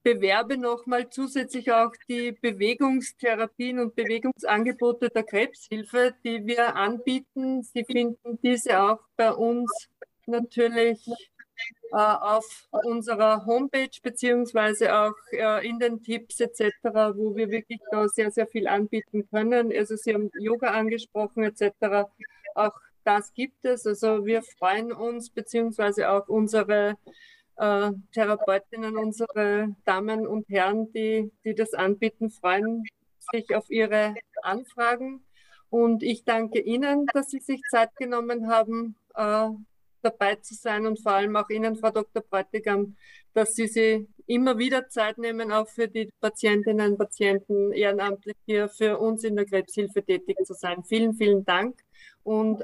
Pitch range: 210-235 Hz